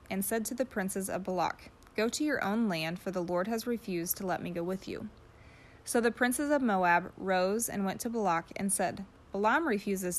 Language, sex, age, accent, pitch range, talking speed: English, female, 20-39, American, 180-225 Hz, 220 wpm